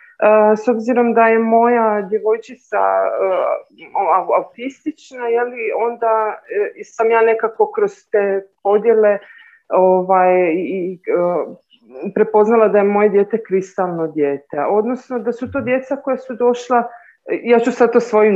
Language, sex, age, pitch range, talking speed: Croatian, female, 40-59, 210-270 Hz, 135 wpm